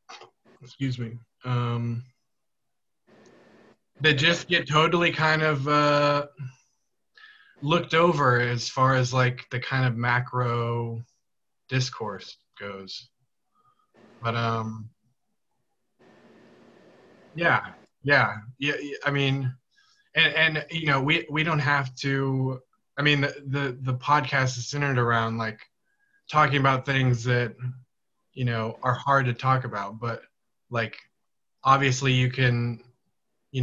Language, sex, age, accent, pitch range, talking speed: English, male, 20-39, American, 120-140 Hz, 115 wpm